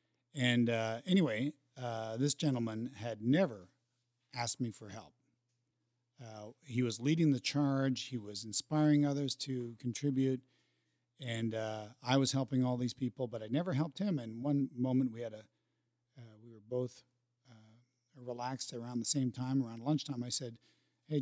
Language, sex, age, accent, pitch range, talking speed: English, male, 50-69, American, 120-145 Hz, 165 wpm